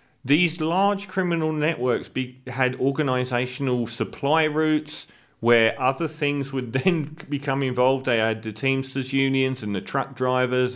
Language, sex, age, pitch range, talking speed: English, male, 40-59, 110-145 Hz, 135 wpm